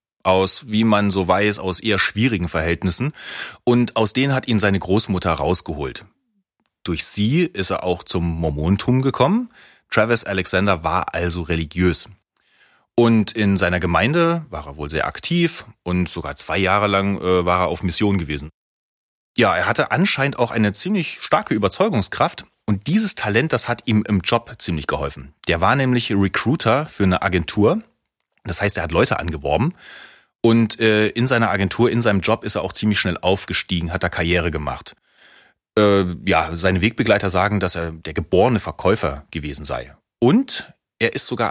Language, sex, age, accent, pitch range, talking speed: German, male, 30-49, German, 90-115 Hz, 165 wpm